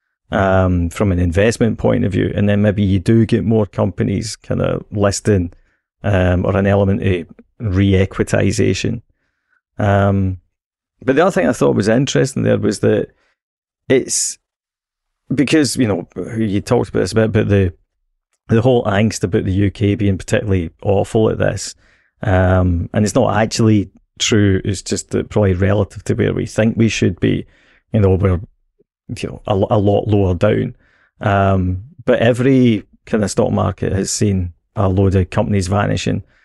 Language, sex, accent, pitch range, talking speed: English, male, British, 95-115 Hz, 165 wpm